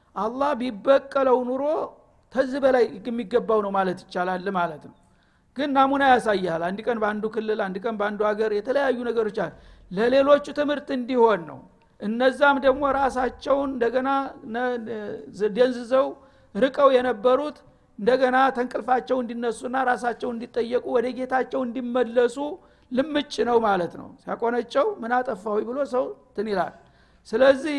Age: 60-79